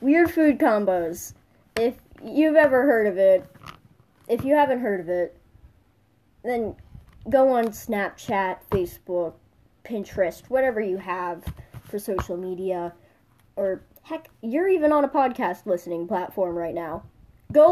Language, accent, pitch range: English, American, 180-260 Hz